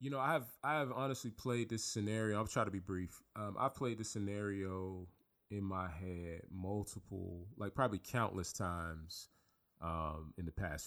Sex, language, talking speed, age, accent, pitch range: male, English, 175 wpm, 30-49, American, 95-120 Hz